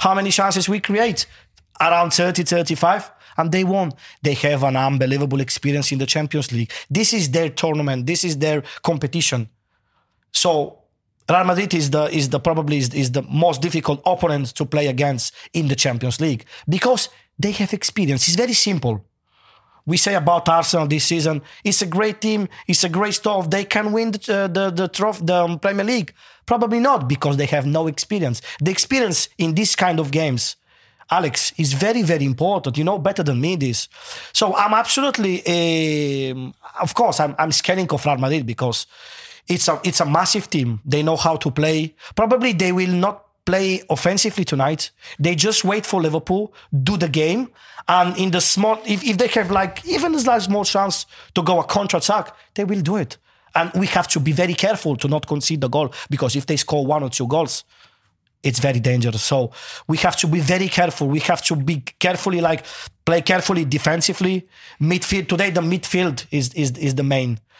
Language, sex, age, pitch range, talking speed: English, male, 30-49, 145-195 Hz, 190 wpm